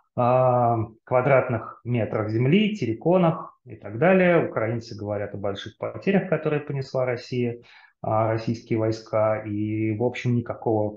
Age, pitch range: 30-49, 110-130 Hz